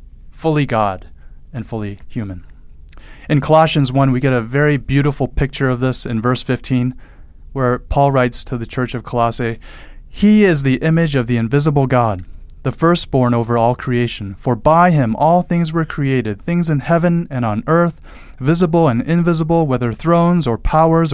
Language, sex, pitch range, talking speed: English, male, 110-155 Hz, 170 wpm